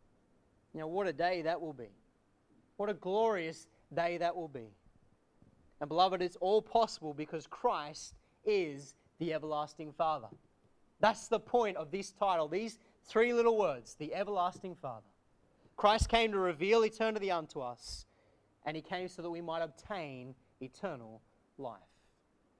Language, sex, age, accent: English, male, 30-49, Australian